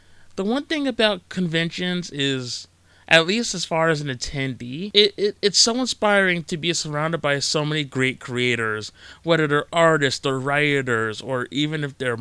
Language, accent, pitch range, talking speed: English, American, 120-165 Hz, 170 wpm